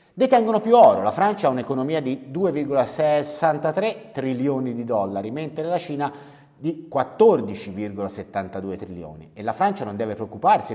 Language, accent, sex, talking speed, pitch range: Italian, native, male, 135 wpm, 110-150 Hz